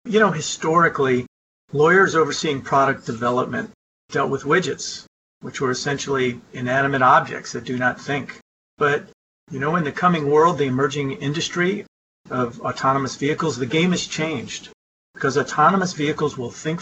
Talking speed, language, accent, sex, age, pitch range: 145 wpm, English, American, male, 40-59, 135-170 Hz